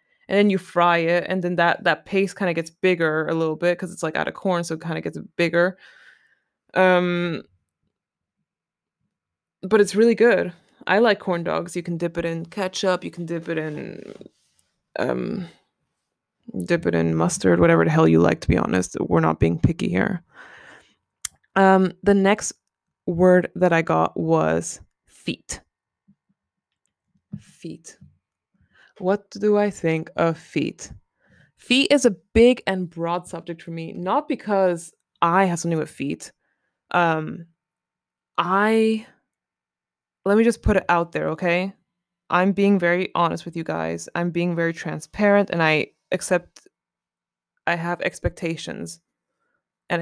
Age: 20-39